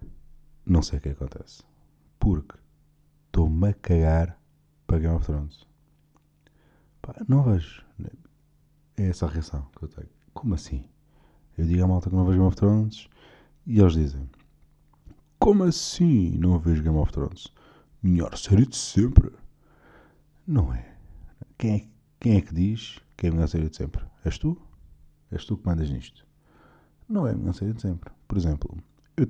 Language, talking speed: Portuguese, 160 wpm